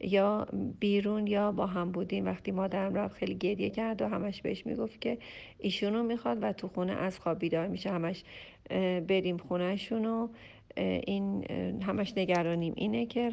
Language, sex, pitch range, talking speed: Persian, female, 170-210 Hz, 155 wpm